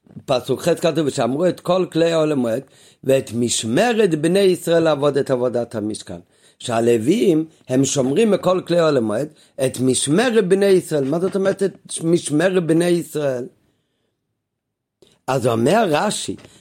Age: 50-69